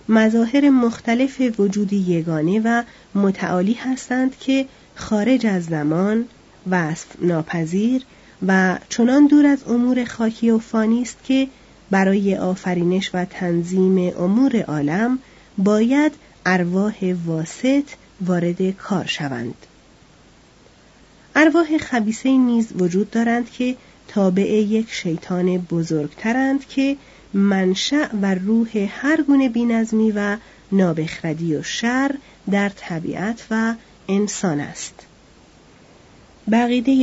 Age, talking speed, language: 30-49, 100 wpm, Persian